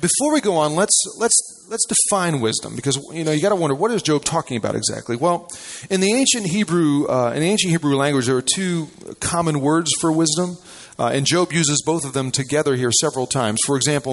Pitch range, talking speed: 125-170 Hz, 225 wpm